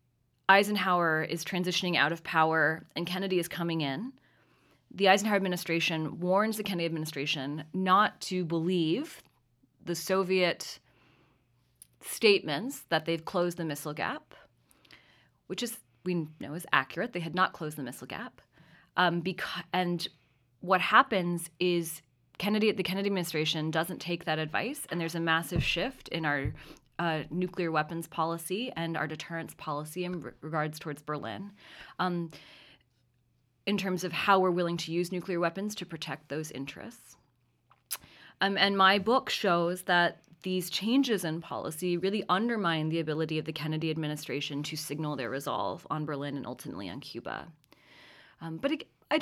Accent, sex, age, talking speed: American, female, 30-49, 150 wpm